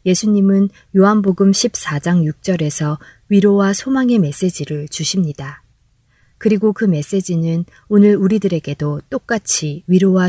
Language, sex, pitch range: Korean, female, 155-205 Hz